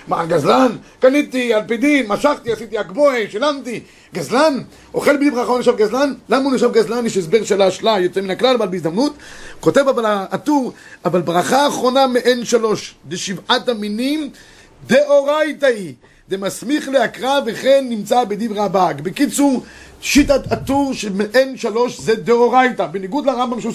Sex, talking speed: male, 140 wpm